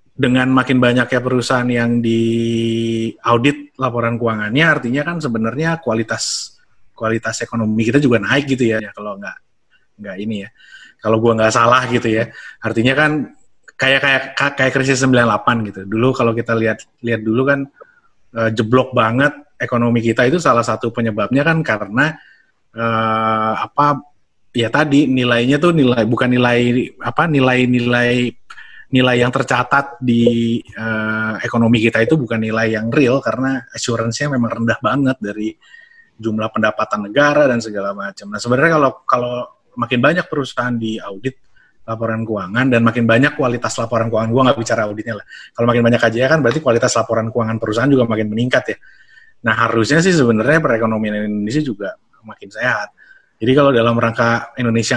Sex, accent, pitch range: male, native, 115-130 Hz